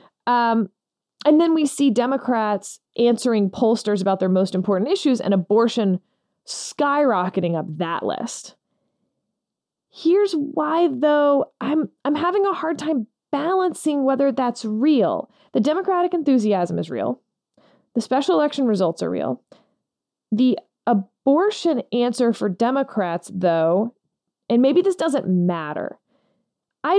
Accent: American